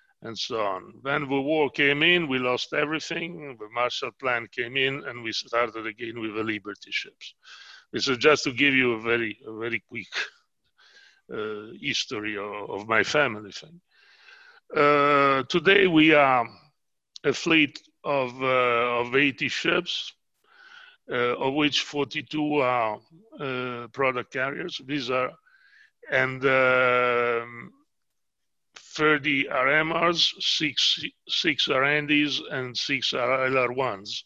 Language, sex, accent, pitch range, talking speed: English, male, Italian, 120-155 Hz, 130 wpm